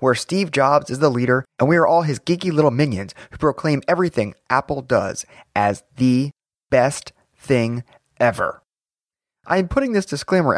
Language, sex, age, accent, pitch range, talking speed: English, male, 30-49, American, 125-170 Hz, 165 wpm